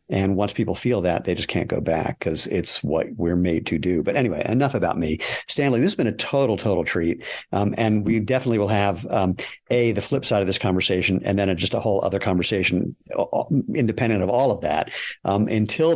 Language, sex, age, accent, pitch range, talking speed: English, male, 50-69, American, 95-120 Hz, 220 wpm